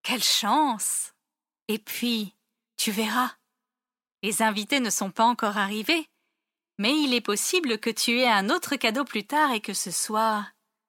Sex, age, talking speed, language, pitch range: female, 30-49, 160 wpm, French, 220-285 Hz